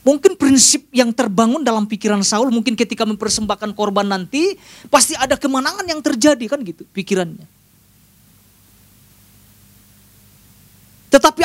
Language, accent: Indonesian, native